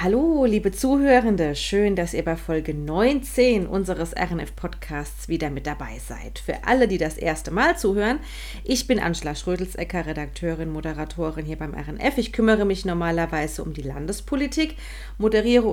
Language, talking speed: German, 150 wpm